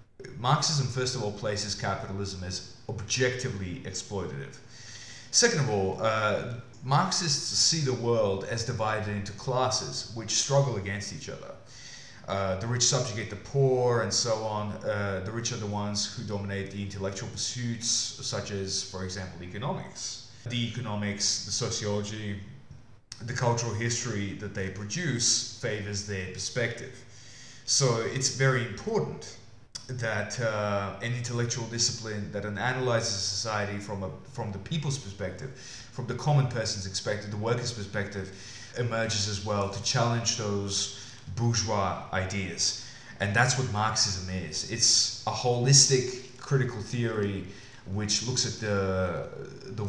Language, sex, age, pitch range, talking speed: English, male, 20-39, 100-125 Hz, 135 wpm